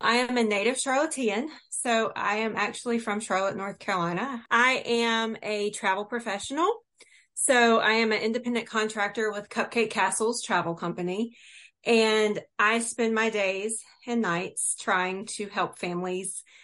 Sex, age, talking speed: female, 30-49, 145 wpm